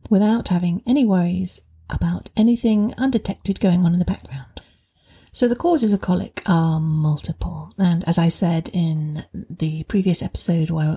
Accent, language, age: British, English, 40-59